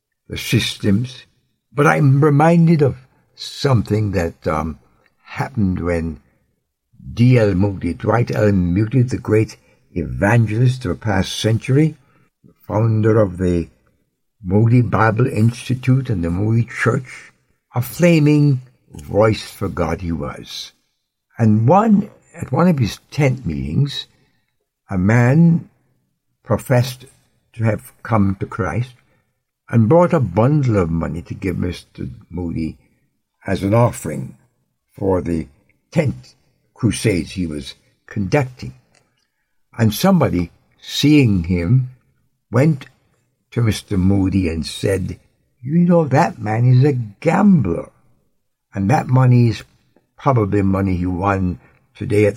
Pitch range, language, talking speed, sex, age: 95-130 Hz, English, 120 wpm, male, 60-79